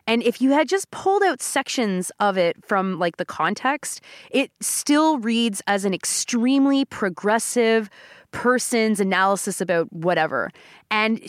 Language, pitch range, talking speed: English, 180-235 Hz, 140 wpm